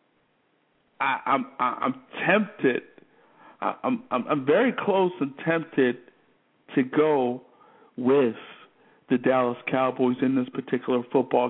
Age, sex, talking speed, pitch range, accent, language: 50-69, male, 110 wpm, 125-175 Hz, American, English